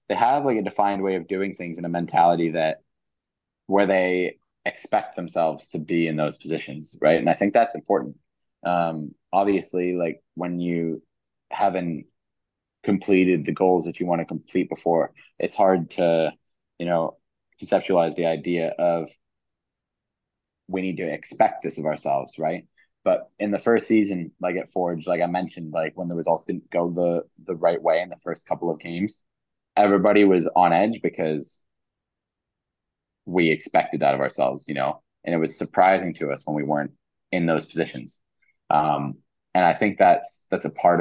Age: 20-39